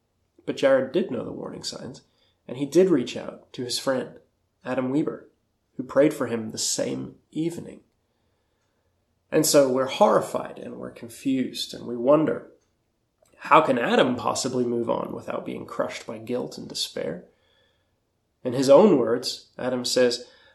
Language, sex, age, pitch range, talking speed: English, male, 20-39, 115-135 Hz, 155 wpm